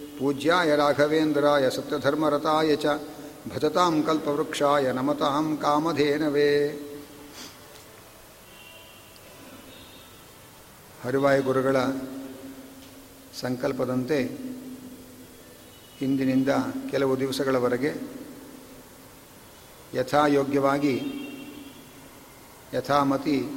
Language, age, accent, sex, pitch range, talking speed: Kannada, 50-69, native, male, 140-180 Hz, 40 wpm